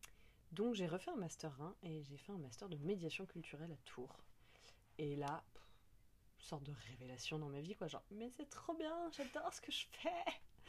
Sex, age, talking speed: female, 20-39, 210 wpm